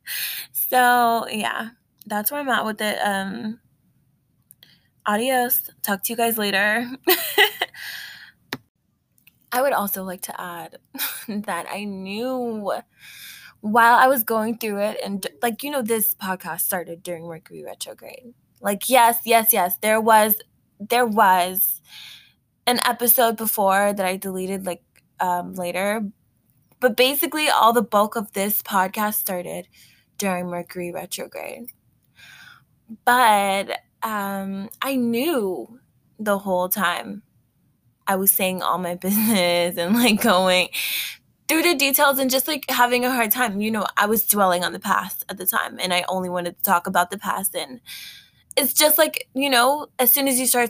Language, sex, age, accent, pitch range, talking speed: English, female, 20-39, American, 185-245 Hz, 150 wpm